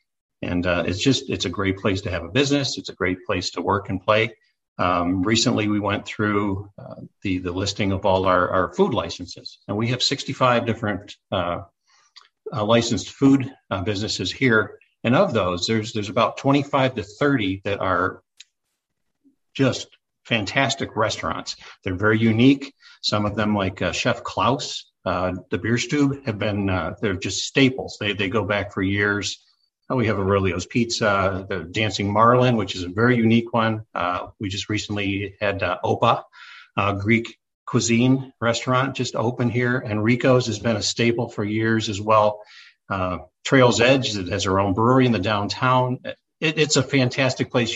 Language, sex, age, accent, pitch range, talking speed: English, male, 50-69, American, 100-120 Hz, 175 wpm